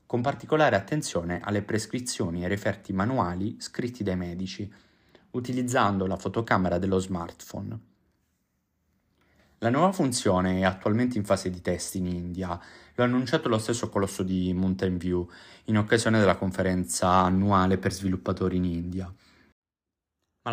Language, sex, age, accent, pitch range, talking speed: Italian, male, 30-49, native, 90-120 Hz, 135 wpm